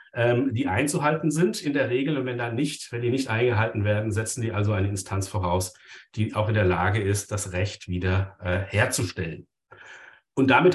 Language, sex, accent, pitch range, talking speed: German, male, German, 110-135 Hz, 190 wpm